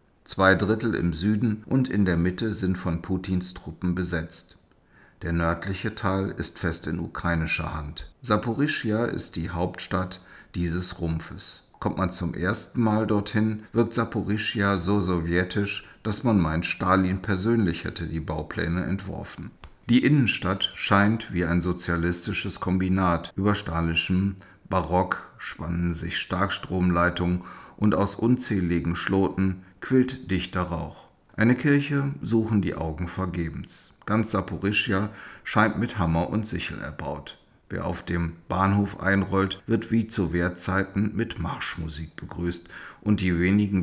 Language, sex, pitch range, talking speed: German, male, 85-105 Hz, 130 wpm